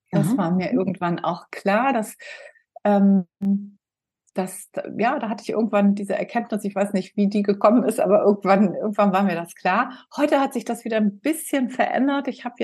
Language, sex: German, female